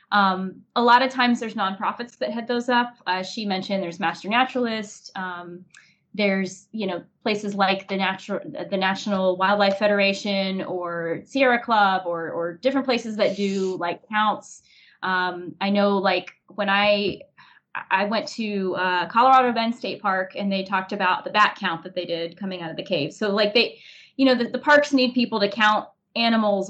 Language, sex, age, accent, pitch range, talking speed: English, female, 20-39, American, 190-240 Hz, 185 wpm